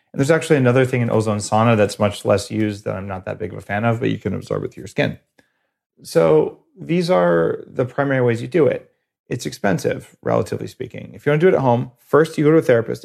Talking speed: 255 wpm